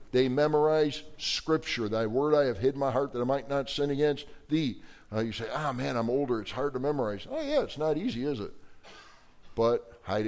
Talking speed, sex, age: 230 wpm, male, 50-69